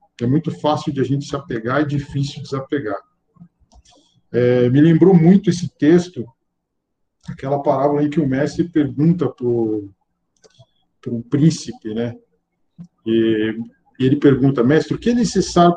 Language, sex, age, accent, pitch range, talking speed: Portuguese, male, 50-69, Brazilian, 125-155 Hz, 145 wpm